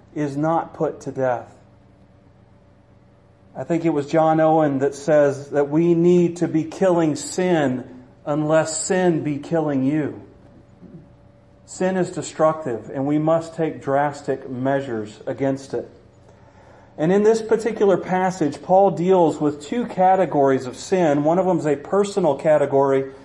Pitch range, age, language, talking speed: 135-175 Hz, 40-59, English, 140 wpm